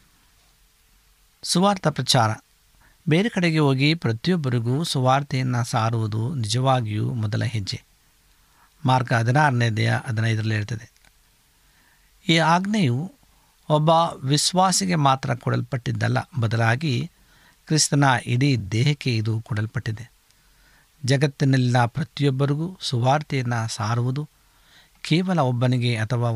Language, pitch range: Kannada, 115-150 Hz